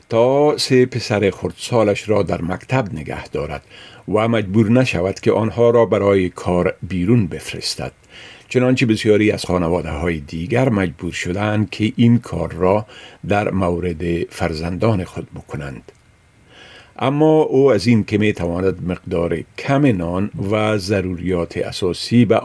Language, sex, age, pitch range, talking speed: Persian, male, 50-69, 90-130 Hz, 135 wpm